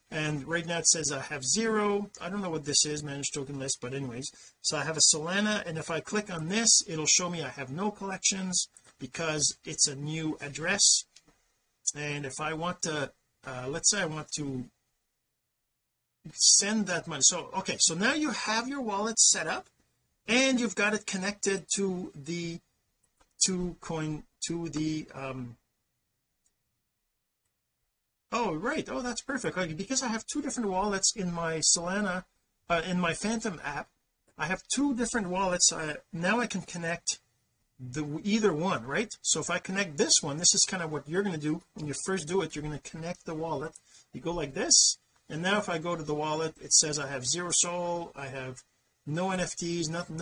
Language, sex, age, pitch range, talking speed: English, male, 40-59, 145-190 Hz, 190 wpm